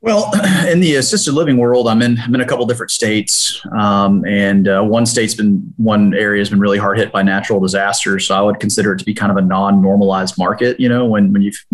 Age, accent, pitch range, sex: 30-49, American, 95-120 Hz, male